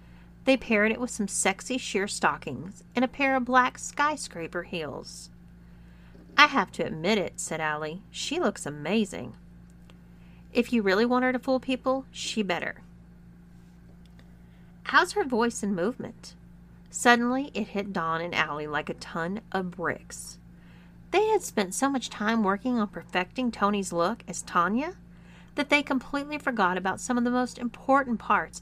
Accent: American